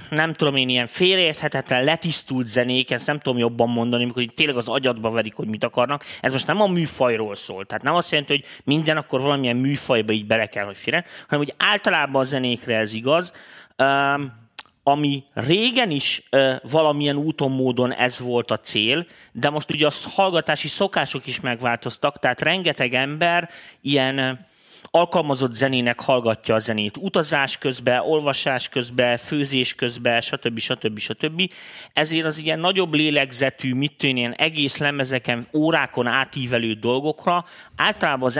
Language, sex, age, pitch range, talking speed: Hungarian, male, 30-49, 120-150 Hz, 150 wpm